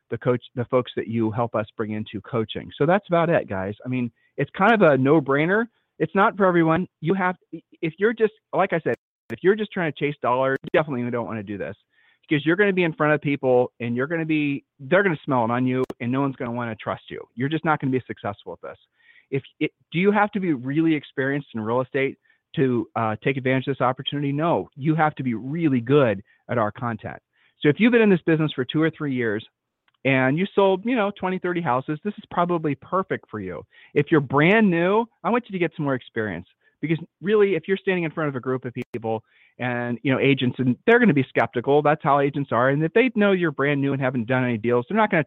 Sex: male